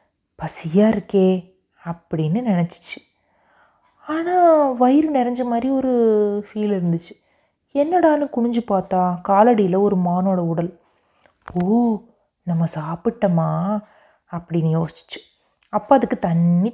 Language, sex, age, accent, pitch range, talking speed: Tamil, female, 30-49, native, 180-235 Hz, 95 wpm